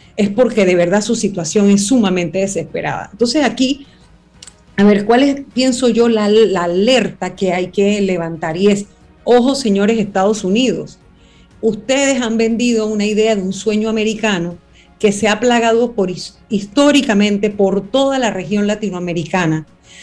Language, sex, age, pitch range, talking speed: Spanish, female, 40-59, 195-235 Hz, 150 wpm